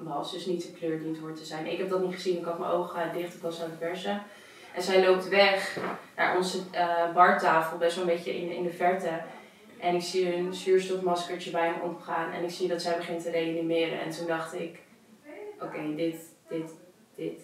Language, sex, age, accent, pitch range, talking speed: Dutch, female, 20-39, Dutch, 170-190 Hz, 230 wpm